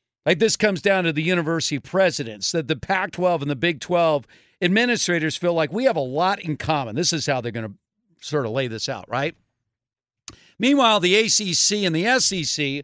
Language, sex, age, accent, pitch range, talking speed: English, male, 50-69, American, 150-225 Hz, 195 wpm